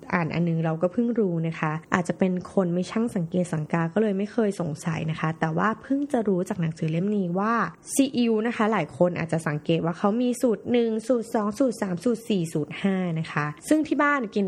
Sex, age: female, 20-39